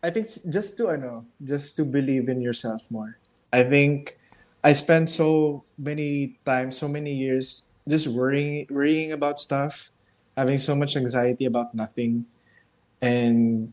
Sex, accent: male, native